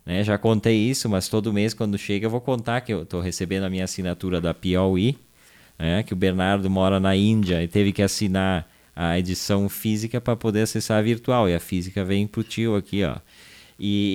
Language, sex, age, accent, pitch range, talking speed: Portuguese, male, 20-39, Brazilian, 95-120 Hz, 210 wpm